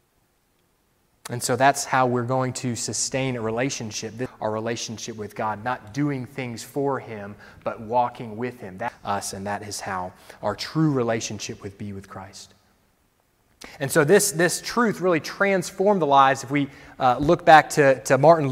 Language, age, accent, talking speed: English, 30-49, American, 170 wpm